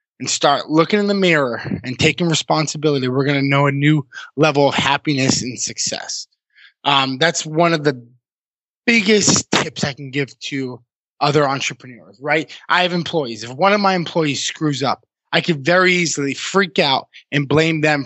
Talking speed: 175 wpm